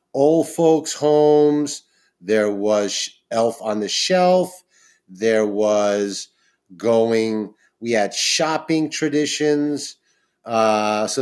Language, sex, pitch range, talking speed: English, male, 105-130 Hz, 95 wpm